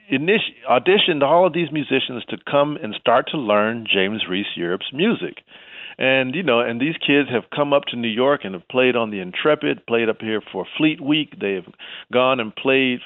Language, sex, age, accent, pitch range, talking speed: English, male, 40-59, American, 105-145 Hz, 200 wpm